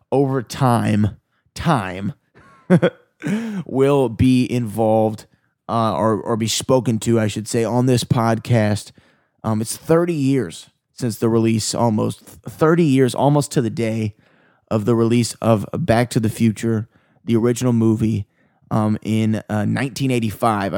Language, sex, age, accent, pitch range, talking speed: English, male, 20-39, American, 110-130 Hz, 135 wpm